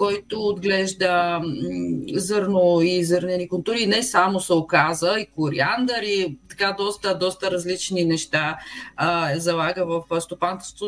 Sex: female